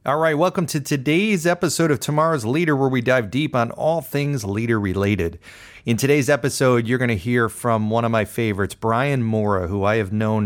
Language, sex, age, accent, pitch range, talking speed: English, male, 40-59, American, 95-120 Hz, 200 wpm